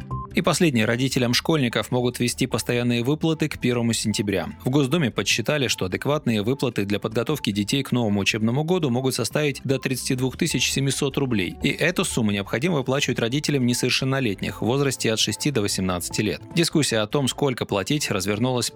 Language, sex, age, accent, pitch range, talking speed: Russian, male, 20-39, native, 110-140 Hz, 160 wpm